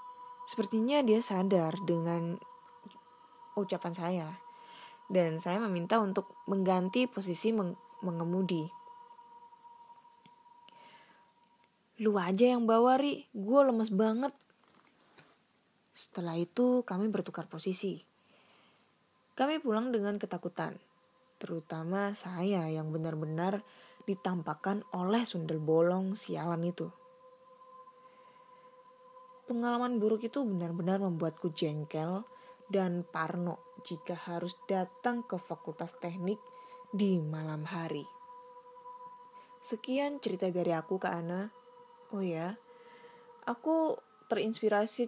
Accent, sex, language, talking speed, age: native, female, Indonesian, 90 wpm, 20-39